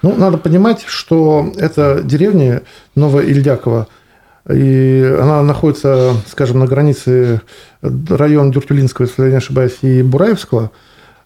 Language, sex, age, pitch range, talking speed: Russian, male, 40-59, 120-155 Hz, 115 wpm